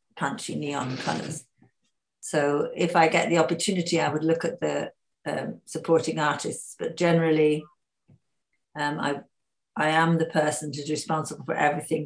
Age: 60-79